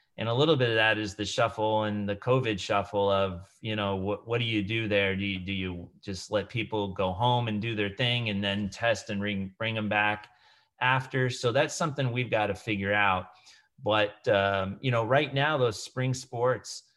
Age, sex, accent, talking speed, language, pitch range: 30-49, male, American, 215 wpm, English, 105-130 Hz